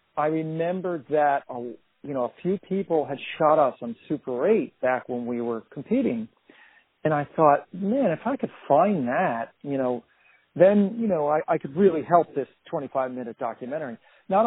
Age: 50-69